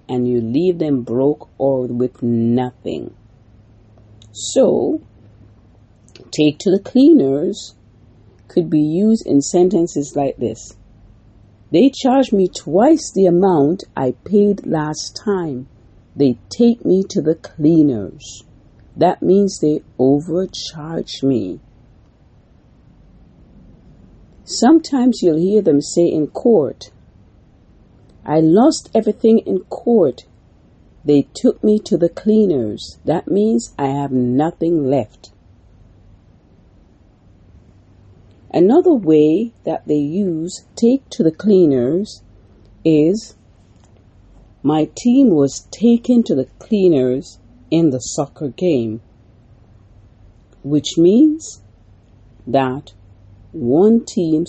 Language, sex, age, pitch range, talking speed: English, female, 50-69, 105-180 Hz, 100 wpm